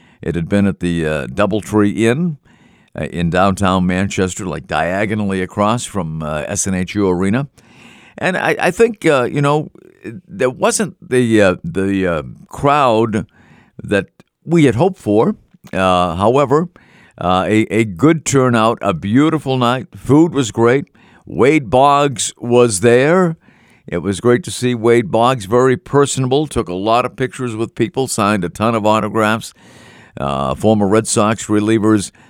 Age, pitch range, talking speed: 50-69, 100-130 Hz, 150 wpm